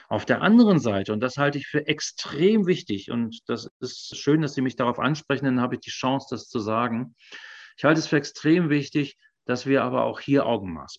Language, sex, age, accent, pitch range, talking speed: German, male, 40-59, German, 115-140 Hz, 225 wpm